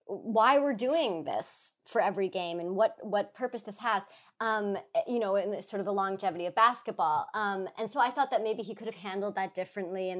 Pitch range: 180-225 Hz